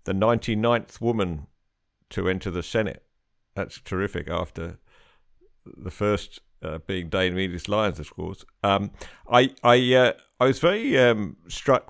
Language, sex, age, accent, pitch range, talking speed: English, male, 50-69, British, 90-110 Hz, 135 wpm